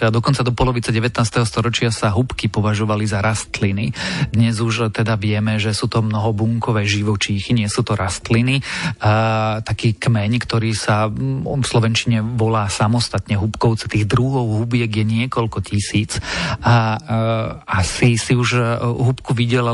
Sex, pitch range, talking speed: male, 110-125 Hz, 140 wpm